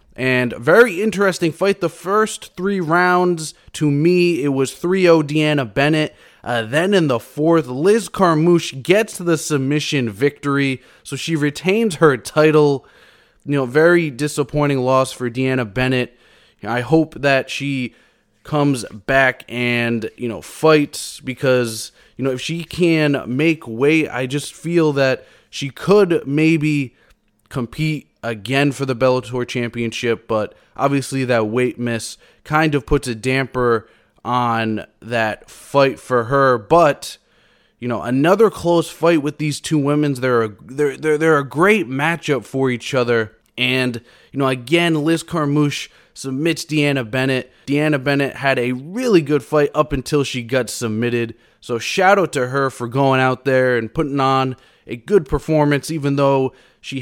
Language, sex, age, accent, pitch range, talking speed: English, male, 20-39, American, 125-155 Hz, 155 wpm